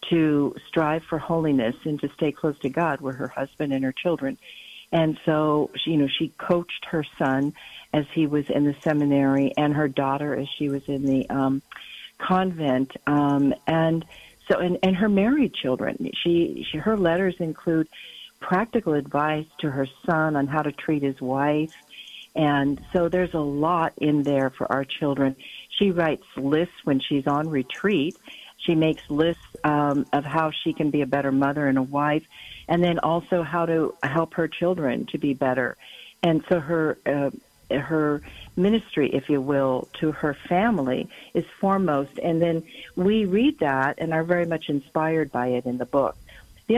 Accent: American